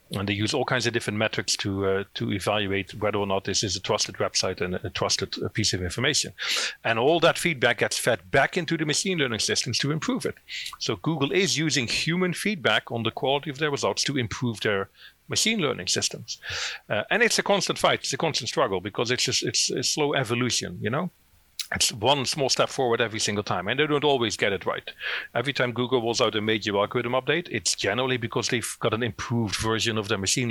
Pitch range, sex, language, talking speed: 100-135 Hz, male, English, 220 wpm